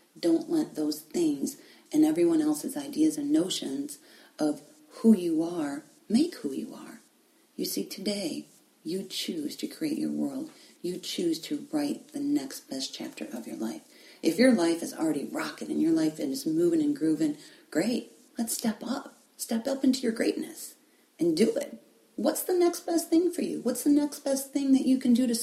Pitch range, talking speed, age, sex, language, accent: 230-315 Hz, 190 wpm, 40-59, female, English, American